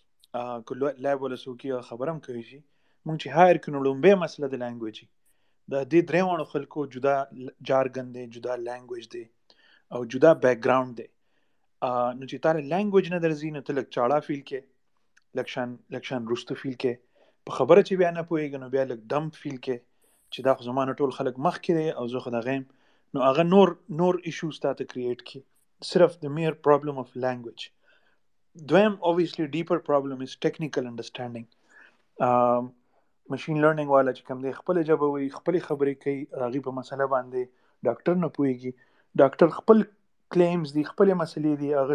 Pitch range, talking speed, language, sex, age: 130-160 Hz, 60 wpm, Urdu, male, 30-49